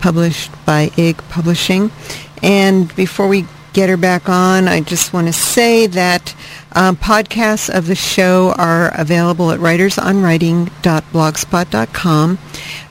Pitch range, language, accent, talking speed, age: 155-185 Hz, English, American, 120 wpm, 50-69